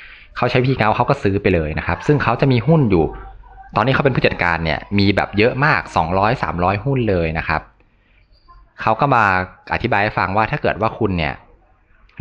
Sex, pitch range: male, 85-115 Hz